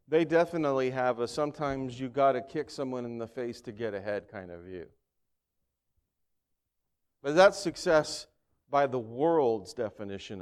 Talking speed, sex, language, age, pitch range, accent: 150 wpm, male, English, 40-59, 95-130 Hz, American